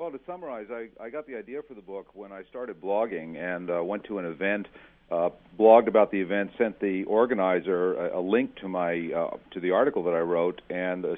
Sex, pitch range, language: male, 100-120 Hz, English